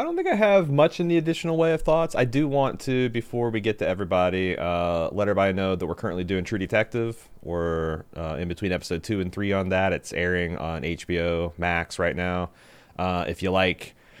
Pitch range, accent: 85-105 Hz, American